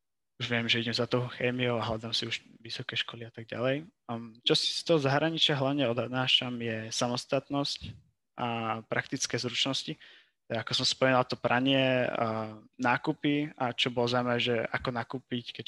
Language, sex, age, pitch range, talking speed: Slovak, male, 20-39, 115-130 Hz, 160 wpm